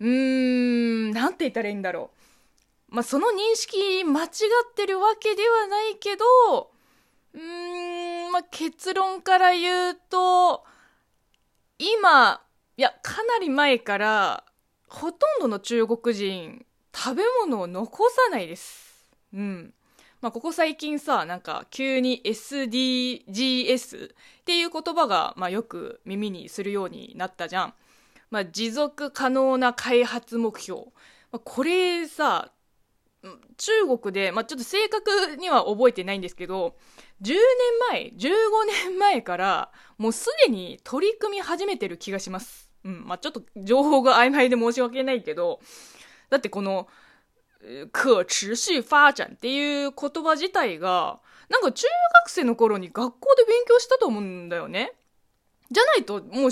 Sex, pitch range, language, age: female, 230-370 Hz, Japanese, 20-39